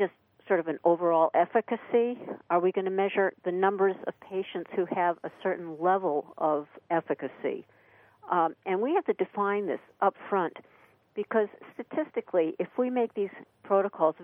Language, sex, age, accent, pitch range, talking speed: English, female, 50-69, American, 165-205 Hz, 155 wpm